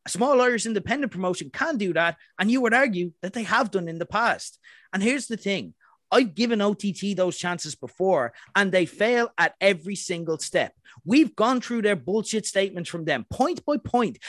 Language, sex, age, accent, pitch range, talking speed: English, male, 30-49, Irish, 185-240 Hz, 195 wpm